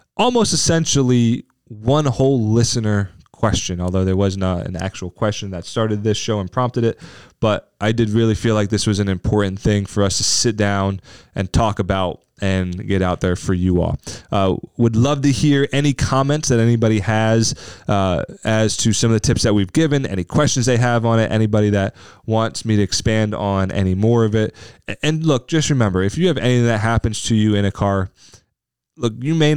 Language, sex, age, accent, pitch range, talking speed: English, male, 20-39, American, 100-120 Hz, 205 wpm